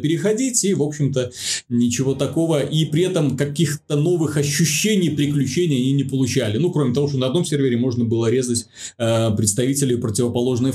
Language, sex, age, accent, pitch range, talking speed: Russian, male, 30-49, native, 125-155 Hz, 160 wpm